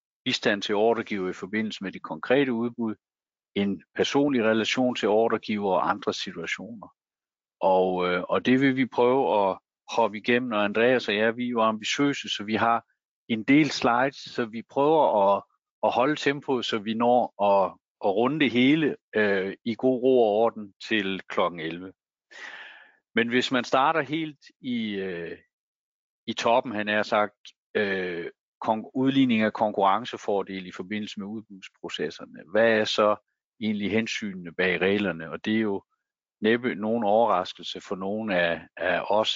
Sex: male